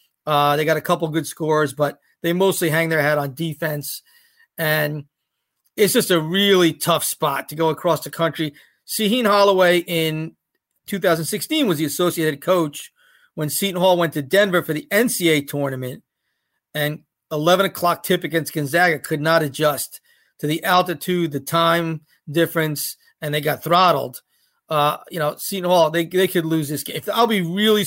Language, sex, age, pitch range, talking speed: English, male, 40-59, 155-200 Hz, 170 wpm